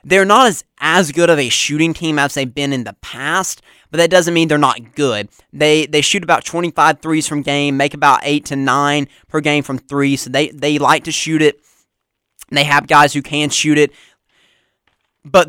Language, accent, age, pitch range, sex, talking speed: English, American, 20-39, 135-160 Hz, male, 210 wpm